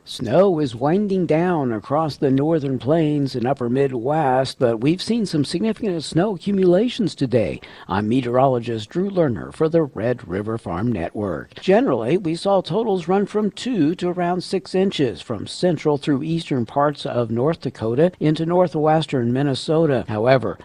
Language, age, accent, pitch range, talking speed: English, 60-79, American, 130-170 Hz, 150 wpm